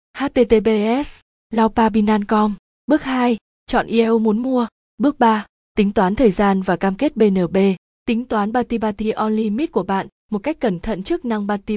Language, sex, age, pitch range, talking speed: Vietnamese, female, 20-39, 195-235 Hz, 165 wpm